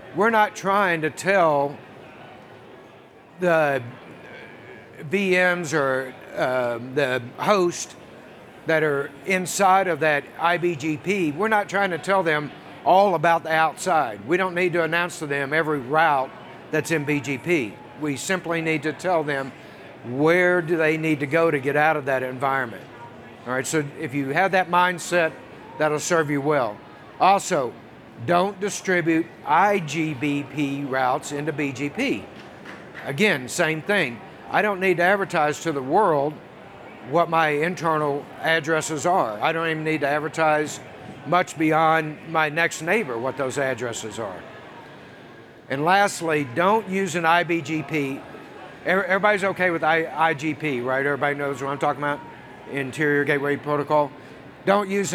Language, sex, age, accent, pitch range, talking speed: English, male, 60-79, American, 145-175 Hz, 140 wpm